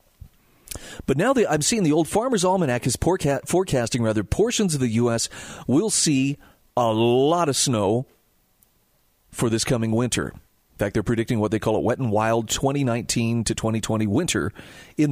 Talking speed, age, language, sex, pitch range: 165 wpm, 40-59, English, male, 115-150 Hz